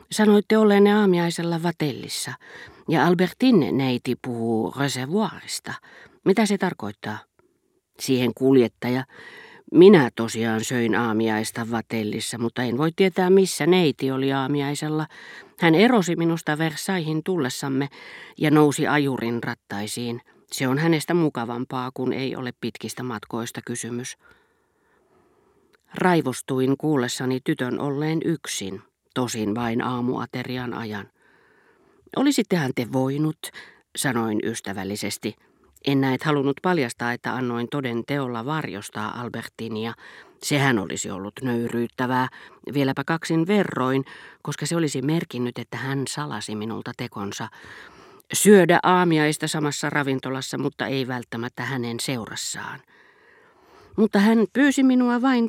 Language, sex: Finnish, female